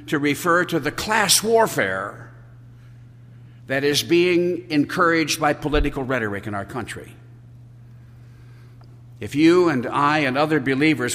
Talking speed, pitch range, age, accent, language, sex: 125 wpm, 120-170 Hz, 60-79, American, English, male